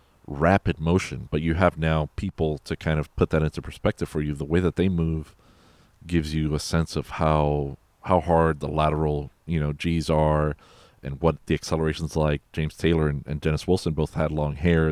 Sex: male